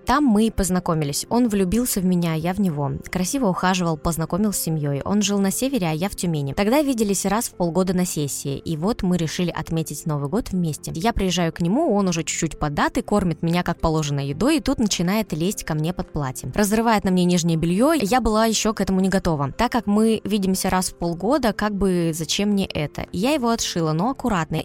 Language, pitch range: Russian, 165-220 Hz